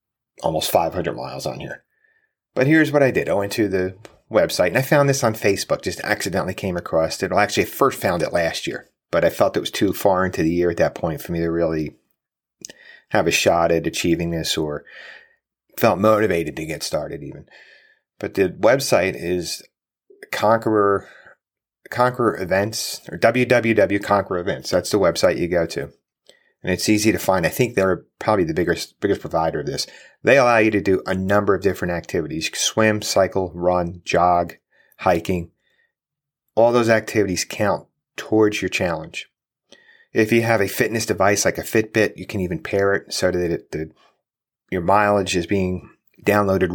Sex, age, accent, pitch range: male, 30-49, American, 90-115 Hz